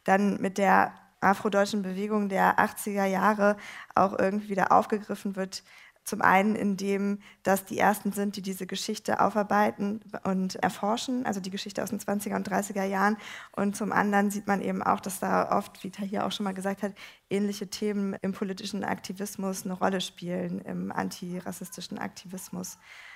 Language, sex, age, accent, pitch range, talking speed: German, female, 20-39, German, 195-225 Hz, 165 wpm